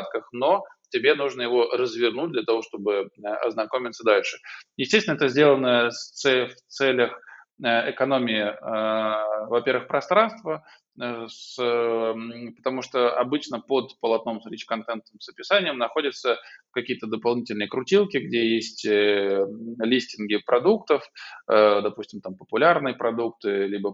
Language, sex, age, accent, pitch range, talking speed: Russian, male, 20-39, native, 110-135 Hz, 100 wpm